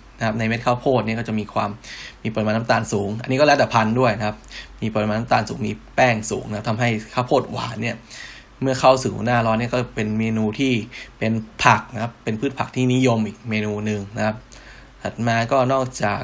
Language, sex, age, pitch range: Thai, male, 10-29, 110-130 Hz